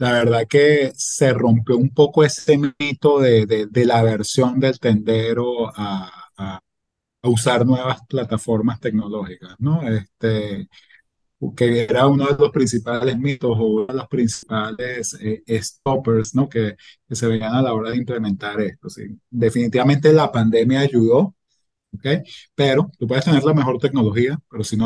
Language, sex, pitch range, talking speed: Spanish, male, 110-130 Hz, 160 wpm